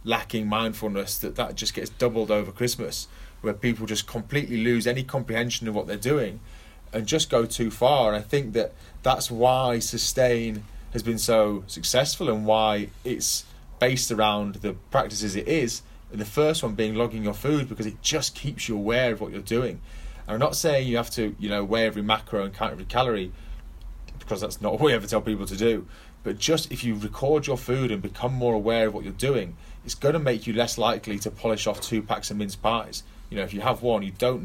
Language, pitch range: English, 105-125 Hz